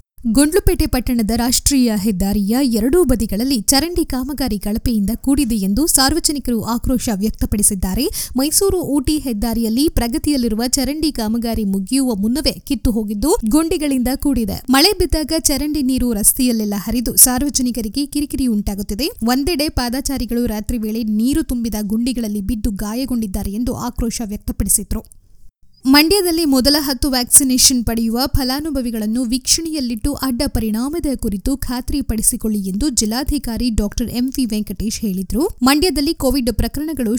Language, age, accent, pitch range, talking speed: Kannada, 20-39, native, 225-280 Hz, 110 wpm